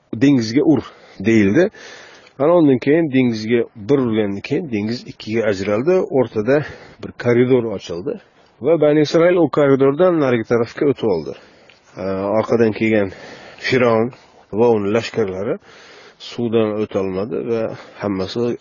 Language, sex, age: Russian, male, 40-59